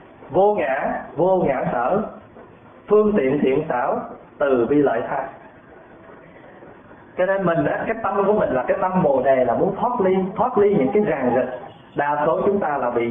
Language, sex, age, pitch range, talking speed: Vietnamese, male, 20-39, 145-200 Hz, 190 wpm